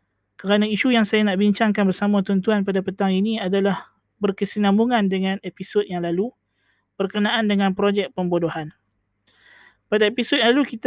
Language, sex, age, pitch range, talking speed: Malay, male, 20-39, 190-215 Hz, 145 wpm